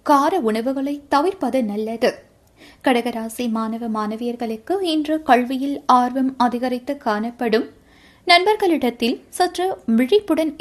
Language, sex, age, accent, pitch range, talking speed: Tamil, female, 20-39, native, 240-315 Hz, 85 wpm